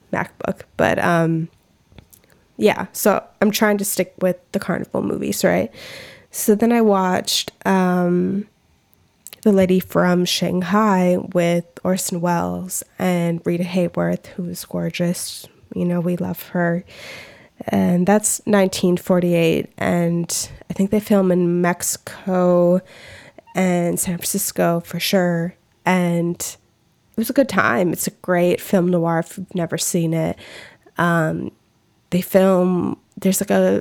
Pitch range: 170-190 Hz